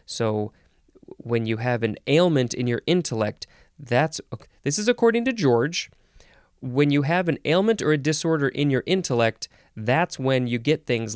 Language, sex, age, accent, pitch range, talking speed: English, male, 20-39, American, 115-155 Hz, 165 wpm